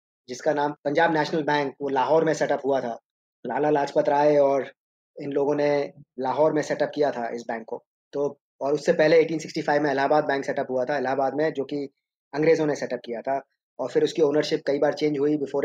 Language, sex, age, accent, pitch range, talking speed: Hindi, male, 30-49, native, 140-155 Hz, 205 wpm